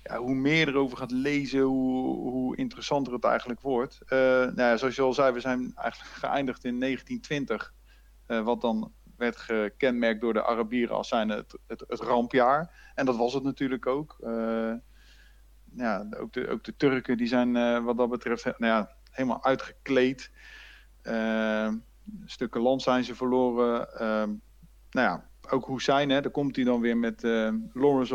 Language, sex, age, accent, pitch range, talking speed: Dutch, male, 50-69, Dutch, 115-145 Hz, 175 wpm